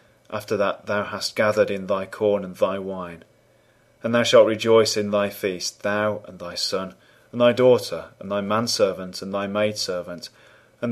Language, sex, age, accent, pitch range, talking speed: English, male, 30-49, British, 95-115 Hz, 175 wpm